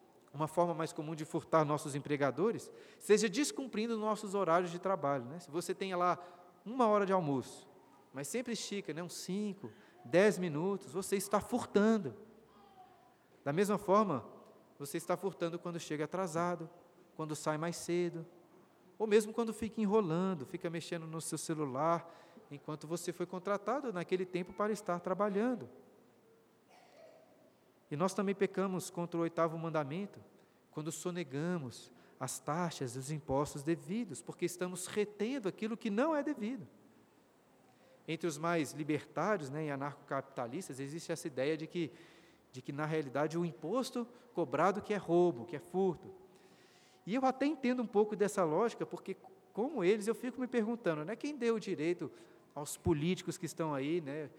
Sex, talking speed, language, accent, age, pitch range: male, 155 wpm, Portuguese, Brazilian, 40-59, 160-205 Hz